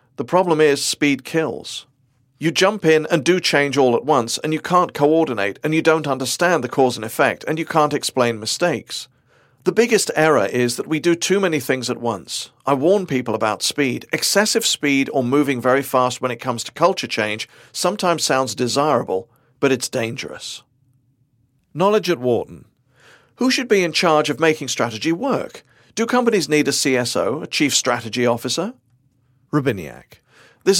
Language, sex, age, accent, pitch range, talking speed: English, male, 40-59, British, 130-165 Hz, 175 wpm